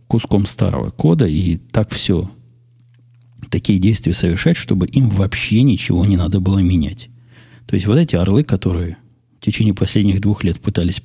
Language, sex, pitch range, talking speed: Russian, male, 95-120 Hz, 155 wpm